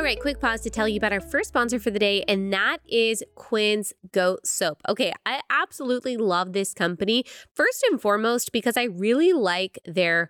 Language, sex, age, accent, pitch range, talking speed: English, female, 20-39, American, 185-245 Hz, 200 wpm